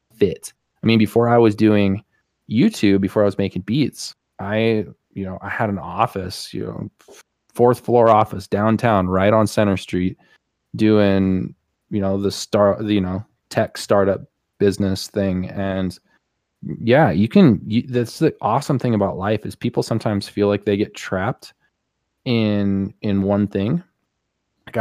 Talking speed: 155 wpm